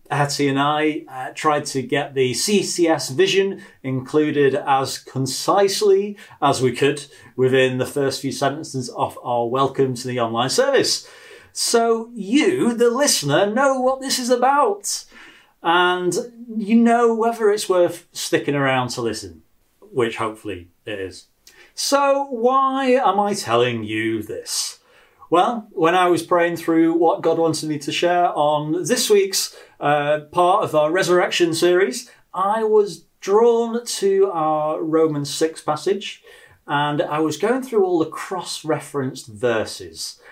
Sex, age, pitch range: male, 30-49, 135-215 Hz